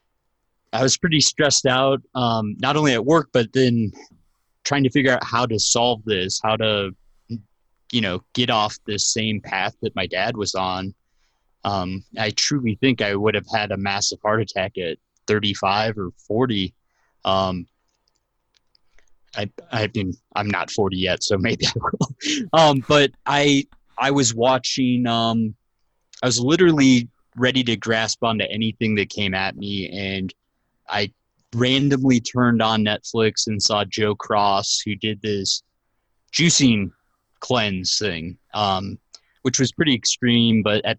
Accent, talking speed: American, 150 wpm